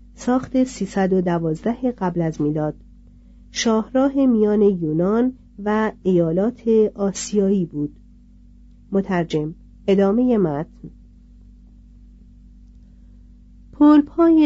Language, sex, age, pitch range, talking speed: Persian, female, 40-59, 175-230 Hz, 80 wpm